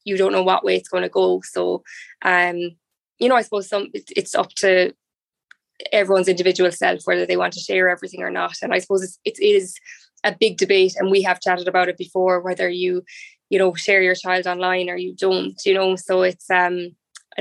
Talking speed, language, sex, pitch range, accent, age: 220 wpm, English, female, 185-195 Hz, Irish, 10-29